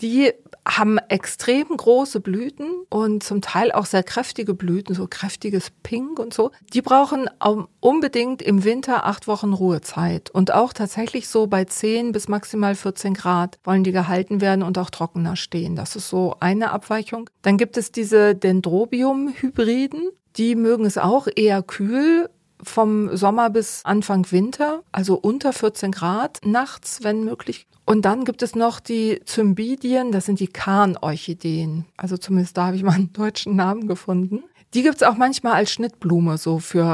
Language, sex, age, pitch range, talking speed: German, female, 40-59, 180-230 Hz, 165 wpm